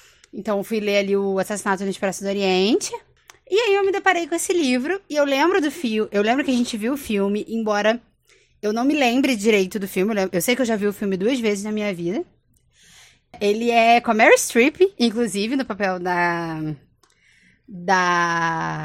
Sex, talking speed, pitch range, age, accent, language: female, 205 wpm, 195-265 Hz, 20-39, Brazilian, Portuguese